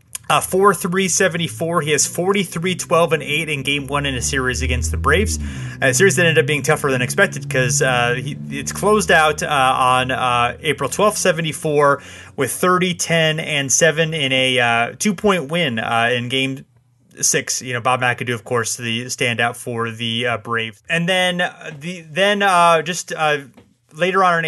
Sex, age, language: male, 30-49, English